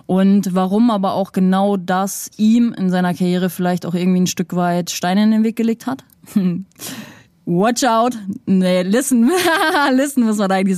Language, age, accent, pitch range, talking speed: German, 20-39, German, 180-205 Hz, 175 wpm